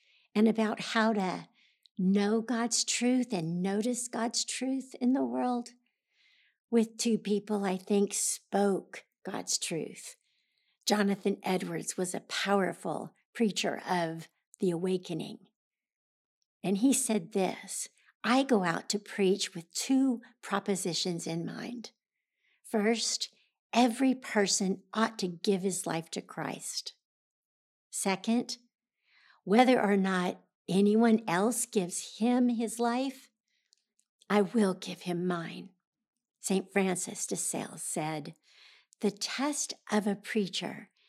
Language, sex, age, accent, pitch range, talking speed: English, female, 60-79, American, 190-235 Hz, 115 wpm